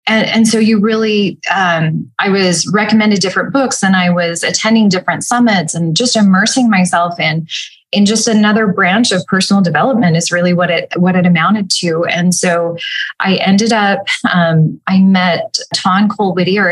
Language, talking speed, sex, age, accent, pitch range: English, 170 wpm, female, 20-39, American, 175-205 Hz